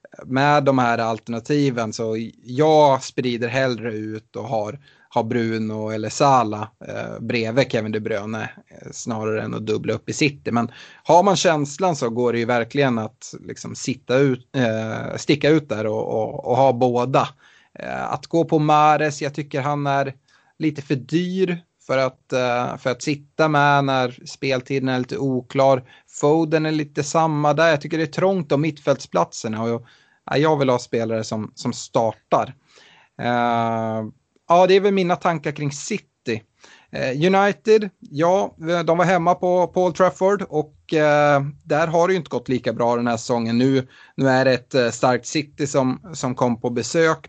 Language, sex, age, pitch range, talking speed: Swedish, male, 30-49, 120-155 Hz, 165 wpm